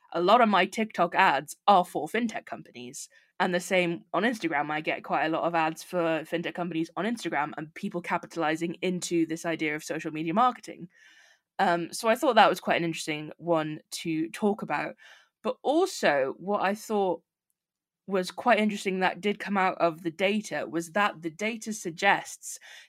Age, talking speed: 20-39, 185 wpm